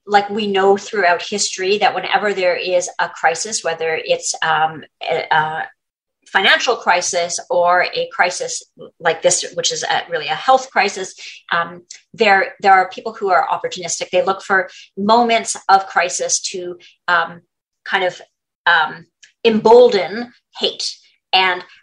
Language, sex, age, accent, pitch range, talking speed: English, female, 40-59, American, 180-220 Hz, 135 wpm